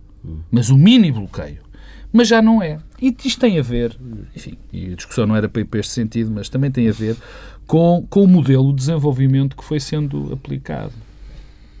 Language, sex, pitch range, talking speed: Portuguese, male, 110-160 Hz, 195 wpm